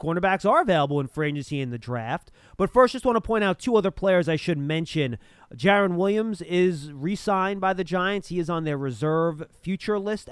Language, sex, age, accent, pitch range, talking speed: English, male, 30-49, American, 150-190 Hz, 205 wpm